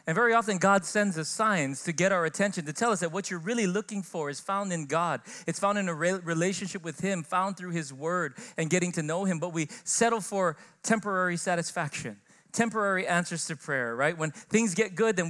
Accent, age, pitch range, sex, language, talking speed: American, 40-59, 150-195 Hz, male, English, 220 wpm